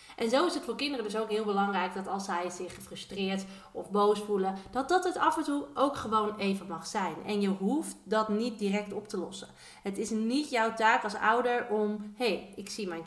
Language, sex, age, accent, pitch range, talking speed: Dutch, female, 30-49, Dutch, 195-255 Hz, 230 wpm